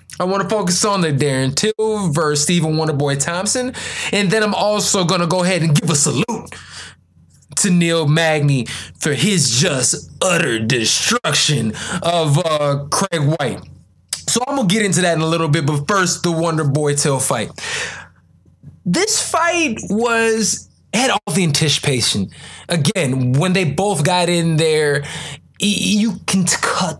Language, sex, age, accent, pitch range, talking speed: English, male, 20-39, American, 145-195 Hz, 155 wpm